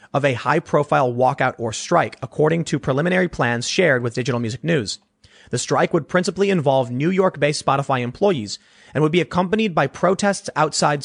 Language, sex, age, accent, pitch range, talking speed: English, male, 30-49, American, 125-165 Hz, 170 wpm